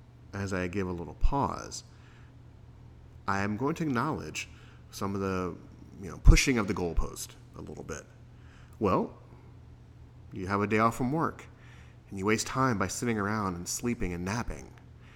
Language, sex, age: English, male, 30-49